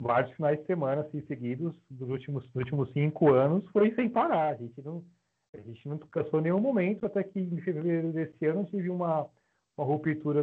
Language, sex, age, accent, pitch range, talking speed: Portuguese, male, 40-59, Brazilian, 135-190 Hz, 200 wpm